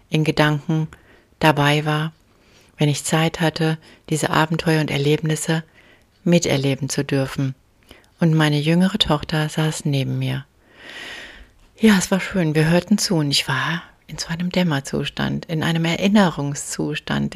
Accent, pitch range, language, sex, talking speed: German, 145-175 Hz, German, female, 135 wpm